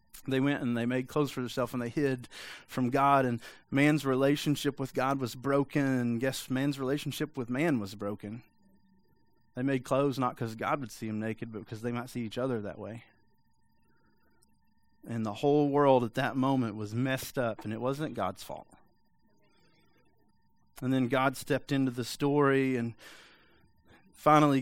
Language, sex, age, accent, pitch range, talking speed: English, male, 30-49, American, 115-140 Hz, 175 wpm